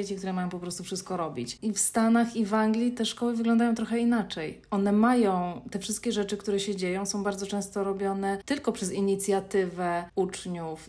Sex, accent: female, native